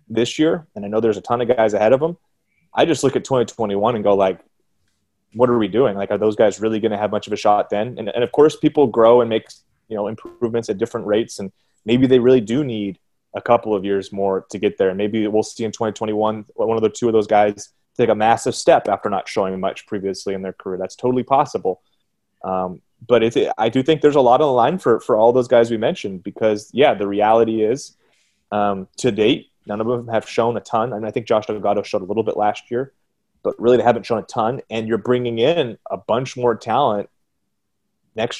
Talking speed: 245 wpm